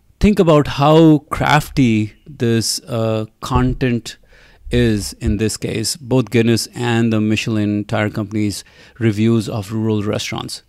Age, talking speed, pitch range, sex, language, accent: 30-49, 125 wpm, 110-130 Hz, male, English, Indian